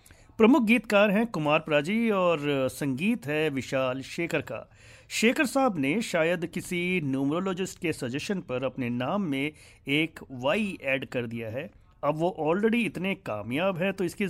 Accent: native